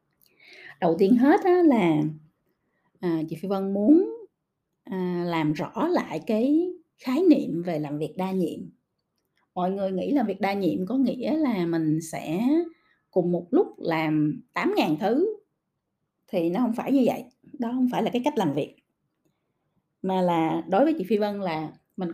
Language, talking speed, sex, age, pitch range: Vietnamese, 165 wpm, female, 20-39, 170-255 Hz